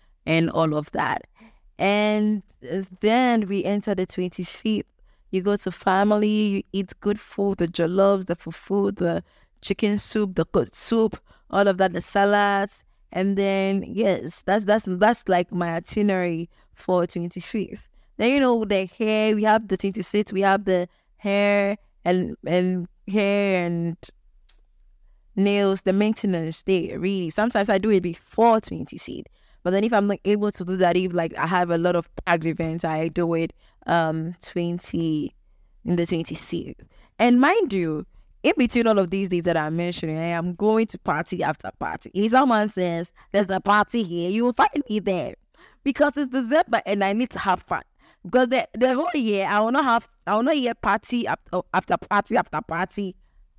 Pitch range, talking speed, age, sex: 175-210 Hz, 175 wpm, 20-39, female